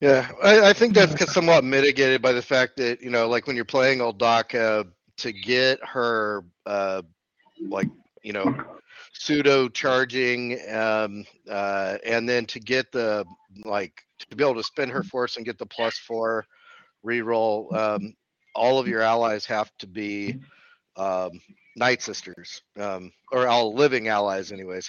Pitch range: 100-130 Hz